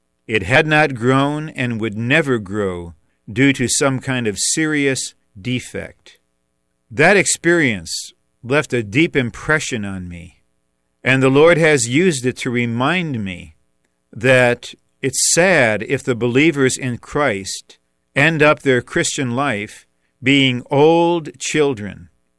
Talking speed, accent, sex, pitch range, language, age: 130 wpm, American, male, 110-145 Hz, English, 50-69